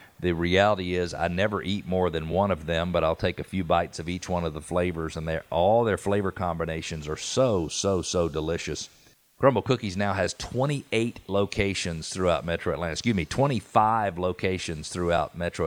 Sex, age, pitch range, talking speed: male, 50-69, 85-105 Hz, 190 wpm